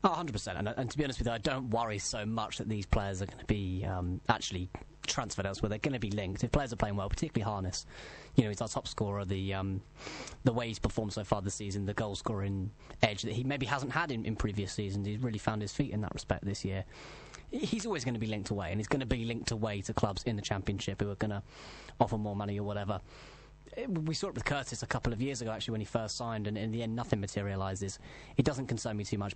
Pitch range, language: 105-125 Hz, English